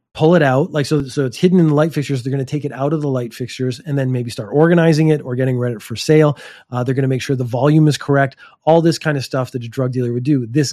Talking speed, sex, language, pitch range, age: 310 wpm, male, English, 130-155 Hz, 30-49